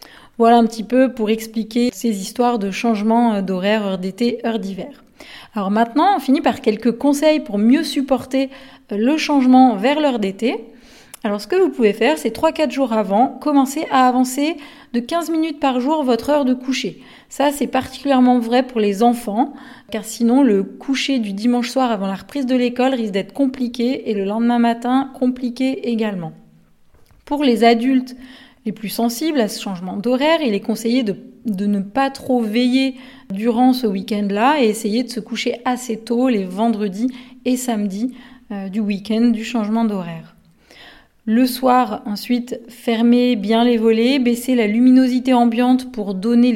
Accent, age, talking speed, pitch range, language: French, 30-49, 170 wpm, 220-260 Hz, French